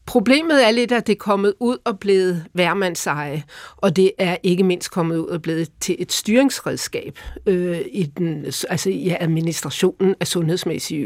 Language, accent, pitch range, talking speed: Danish, native, 170-210 Hz, 145 wpm